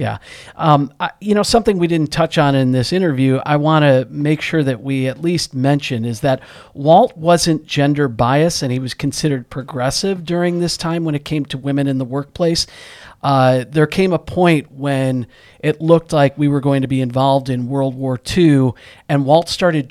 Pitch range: 135-165 Hz